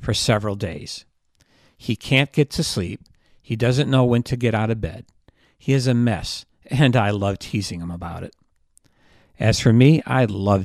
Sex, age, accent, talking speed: male, 50-69, American, 185 wpm